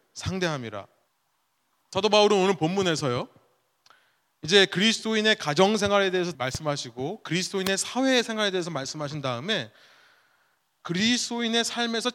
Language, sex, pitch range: Korean, male, 150-220 Hz